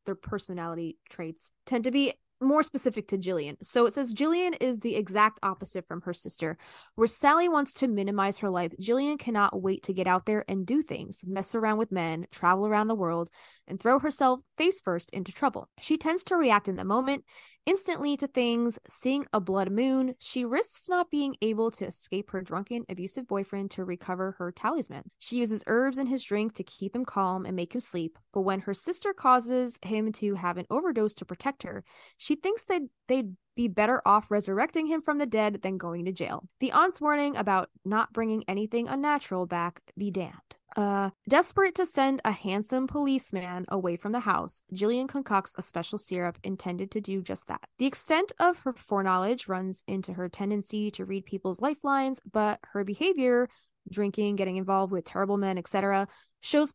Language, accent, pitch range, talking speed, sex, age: English, American, 190-265 Hz, 190 wpm, female, 20-39